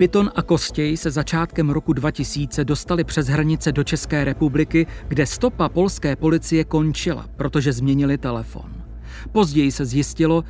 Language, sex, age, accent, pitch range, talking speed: Czech, male, 40-59, native, 145-170 Hz, 135 wpm